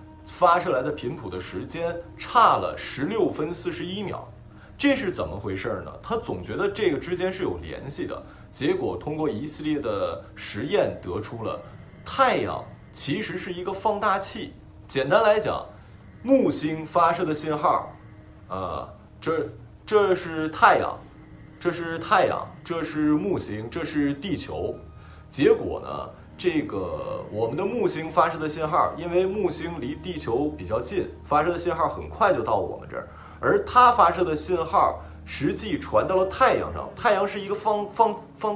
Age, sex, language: 20-39, male, Chinese